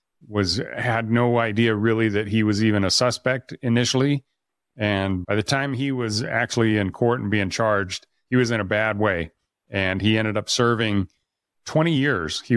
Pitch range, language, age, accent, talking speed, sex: 100-120 Hz, English, 40-59, American, 180 wpm, male